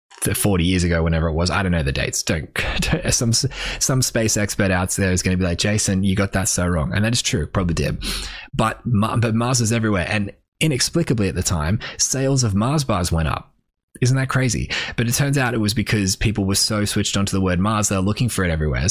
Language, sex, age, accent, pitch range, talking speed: English, male, 20-39, Australian, 95-125 Hz, 240 wpm